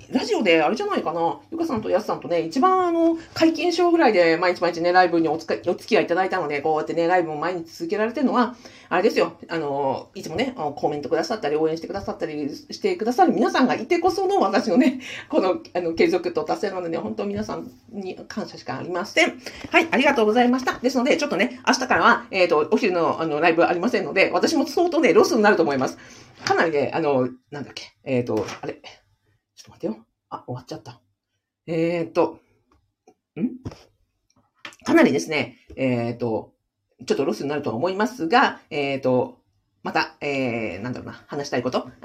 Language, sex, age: Japanese, female, 50-69